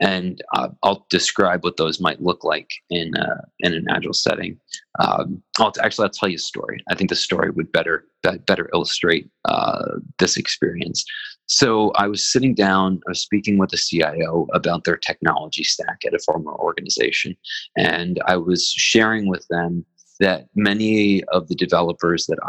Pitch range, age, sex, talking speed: 90-105 Hz, 30-49, male, 180 wpm